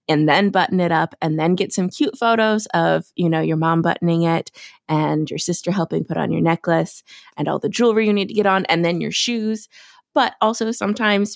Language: English